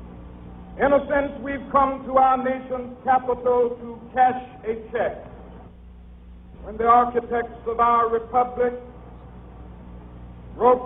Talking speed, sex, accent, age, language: 110 wpm, male, American, 60-79, English